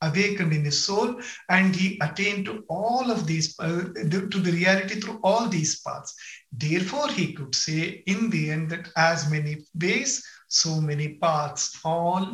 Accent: Indian